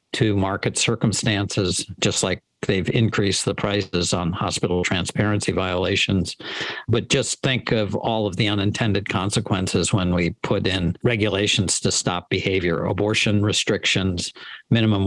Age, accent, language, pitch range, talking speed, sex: 50-69, American, English, 100-115 Hz, 130 wpm, male